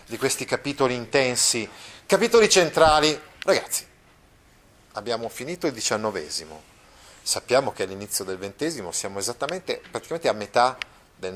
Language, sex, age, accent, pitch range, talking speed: Italian, male, 30-49, native, 100-150 Hz, 115 wpm